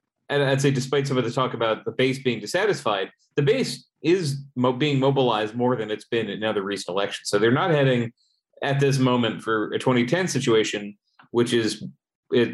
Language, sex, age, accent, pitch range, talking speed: English, male, 30-49, American, 115-140 Hz, 195 wpm